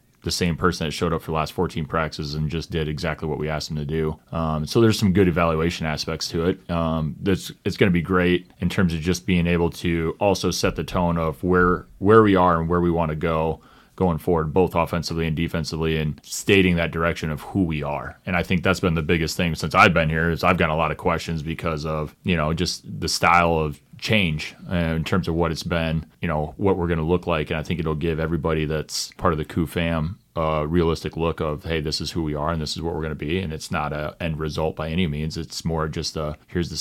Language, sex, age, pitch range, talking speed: English, male, 30-49, 80-90 Hz, 260 wpm